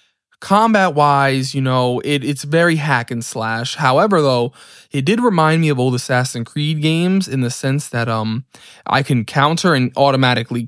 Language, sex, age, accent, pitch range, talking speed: English, male, 20-39, American, 120-155 Hz, 175 wpm